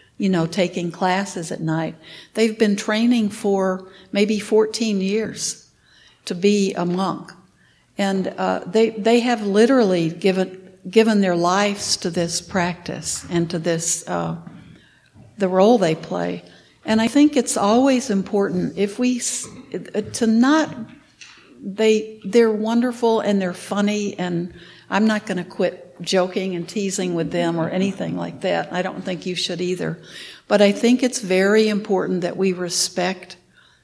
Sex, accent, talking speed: female, American, 145 wpm